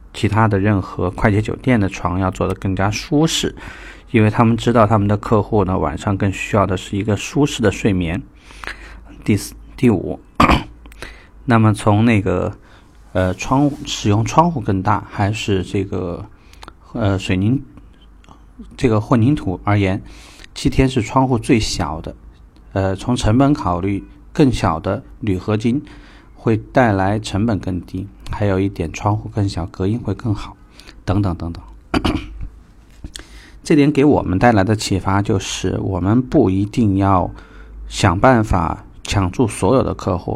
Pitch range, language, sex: 95-115 Hz, Chinese, male